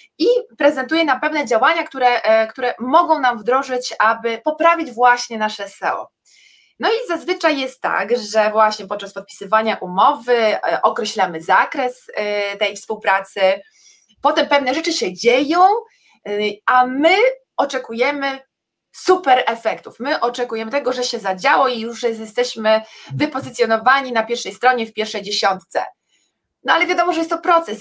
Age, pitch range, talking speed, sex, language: 20-39, 215-285 Hz, 135 wpm, female, Polish